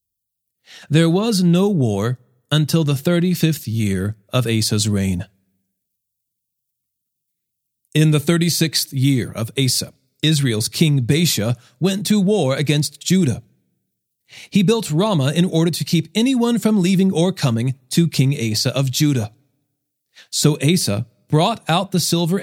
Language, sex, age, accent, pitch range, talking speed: English, male, 40-59, American, 130-180 Hz, 130 wpm